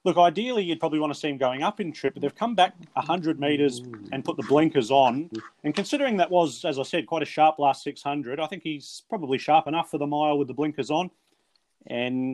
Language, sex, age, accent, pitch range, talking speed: English, male, 30-49, Australian, 130-155 Hz, 240 wpm